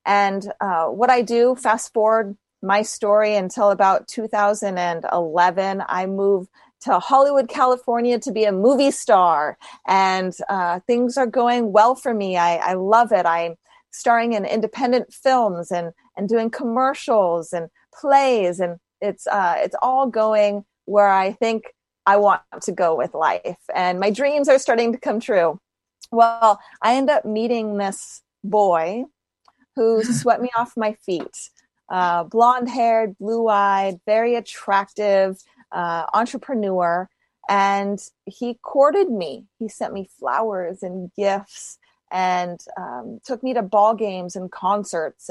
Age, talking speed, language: 30-49, 140 wpm, English